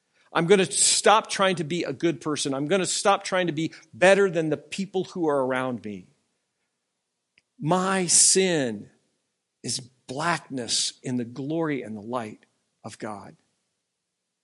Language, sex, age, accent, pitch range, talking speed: English, male, 50-69, American, 135-180 Hz, 155 wpm